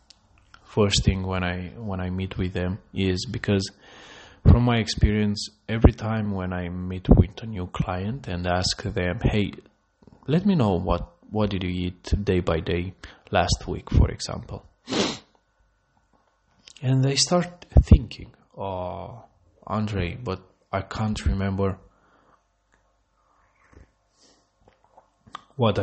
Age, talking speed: 20-39, 125 wpm